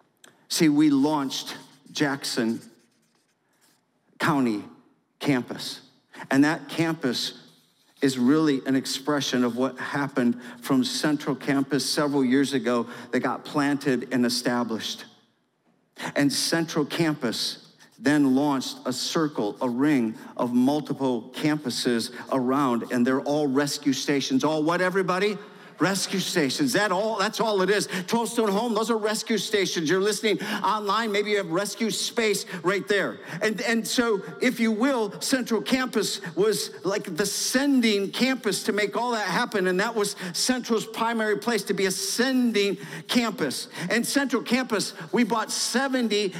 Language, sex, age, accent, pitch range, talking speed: English, male, 50-69, American, 150-230 Hz, 140 wpm